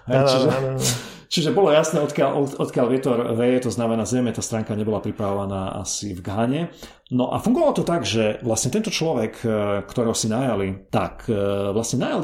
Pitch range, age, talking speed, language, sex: 100-125 Hz, 40-59, 165 wpm, Slovak, male